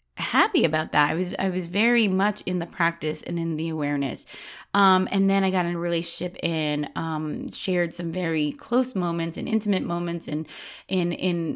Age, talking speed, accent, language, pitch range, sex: 30-49, 195 wpm, American, English, 170-220 Hz, female